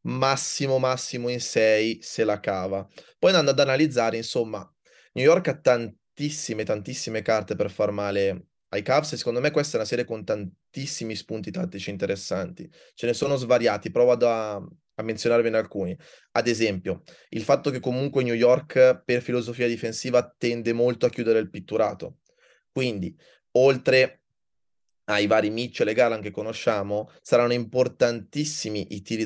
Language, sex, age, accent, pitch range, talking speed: Italian, male, 20-39, native, 105-125 Hz, 160 wpm